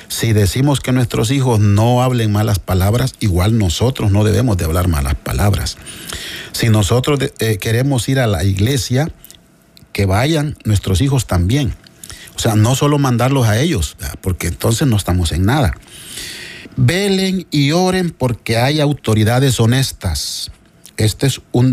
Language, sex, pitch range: Spanish, male, 100-135 Hz